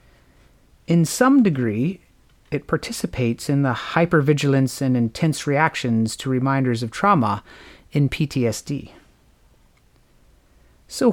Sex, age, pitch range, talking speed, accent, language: male, 30-49, 130-180 Hz, 95 wpm, American, English